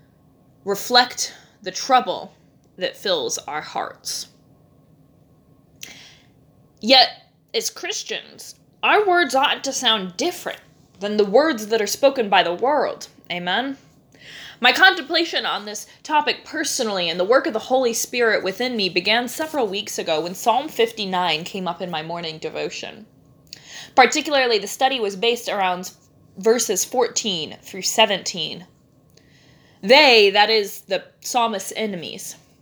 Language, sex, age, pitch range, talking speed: English, female, 20-39, 180-265 Hz, 130 wpm